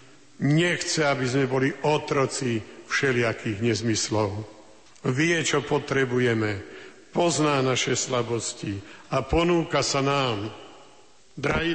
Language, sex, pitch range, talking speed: Slovak, male, 140-170 Hz, 90 wpm